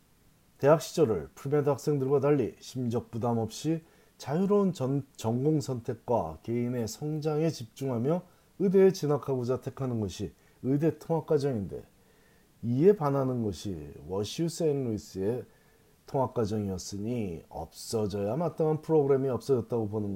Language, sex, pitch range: Korean, male, 105-150 Hz